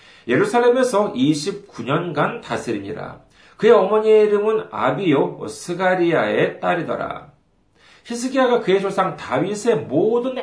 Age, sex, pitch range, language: 40-59, male, 150-220 Hz, Korean